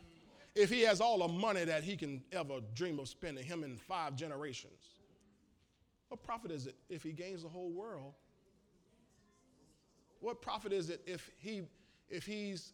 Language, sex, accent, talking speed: English, male, American, 165 wpm